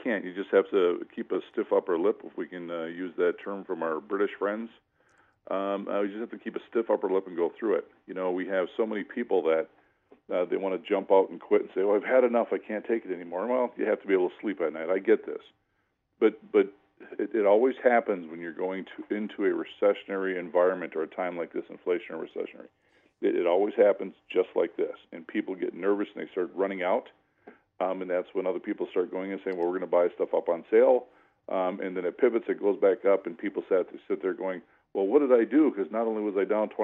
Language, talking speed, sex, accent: English, 255 wpm, male, American